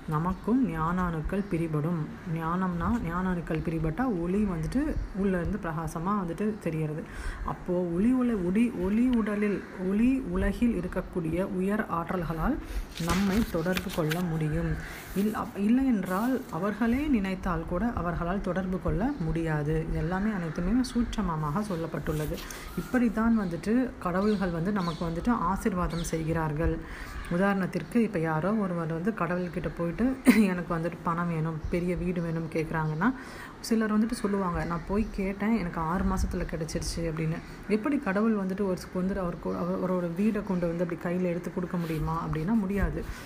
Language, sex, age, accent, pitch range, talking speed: Tamil, female, 30-49, native, 165-210 Hz, 130 wpm